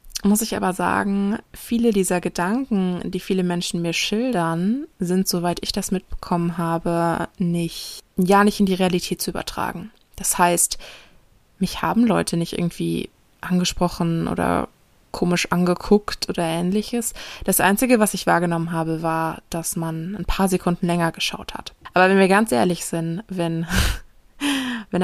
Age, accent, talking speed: 20-39, German, 150 wpm